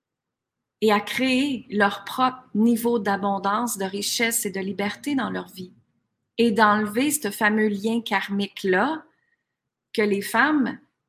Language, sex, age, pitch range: French, female, 40-59, 195-240 Hz